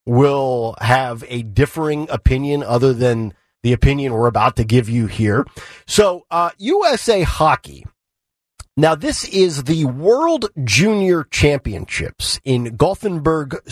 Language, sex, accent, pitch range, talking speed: English, male, American, 115-160 Hz, 120 wpm